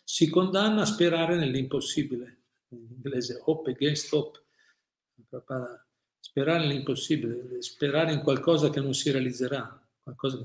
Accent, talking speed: native, 120 wpm